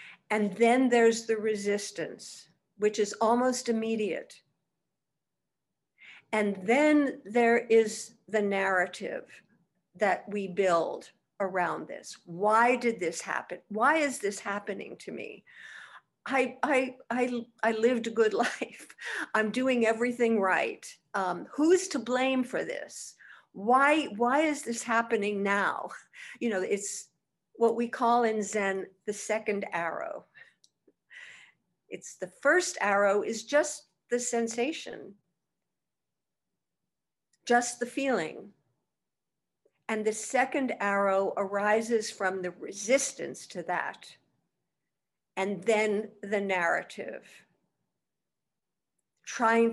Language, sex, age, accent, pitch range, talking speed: English, female, 60-79, American, 205-245 Hz, 110 wpm